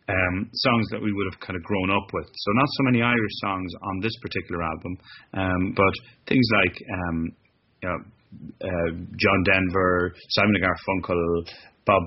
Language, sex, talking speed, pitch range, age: English, male, 175 wpm, 95-115 Hz, 30-49